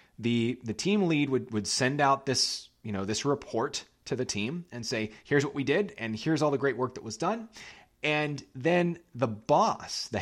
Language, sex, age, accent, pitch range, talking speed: English, male, 30-49, American, 105-140 Hz, 210 wpm